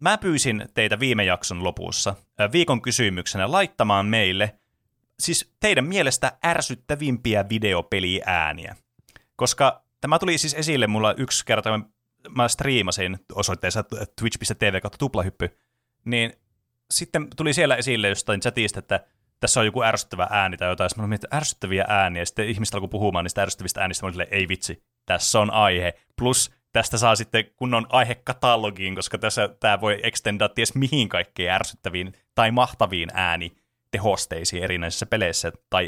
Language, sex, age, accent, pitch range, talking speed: Finnish, male, 30-49, native, 100-125 Hz, 145 wpm